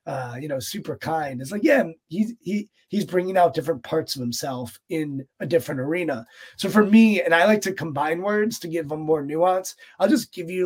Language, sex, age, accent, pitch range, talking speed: English, male, 30-49, American, 155-185 Hz, 220 wpm